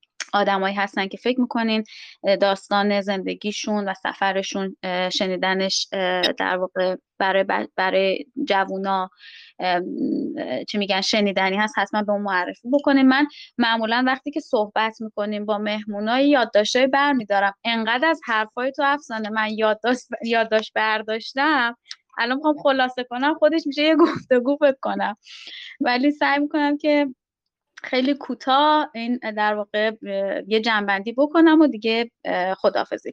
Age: 20-39